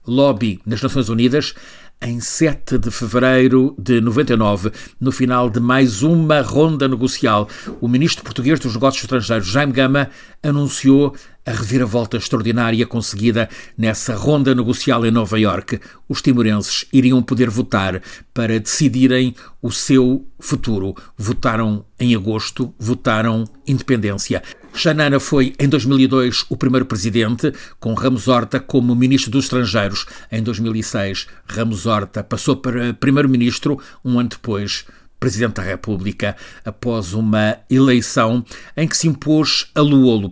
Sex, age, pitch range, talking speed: male, 60-79, 110-130 Hz, 130 wpm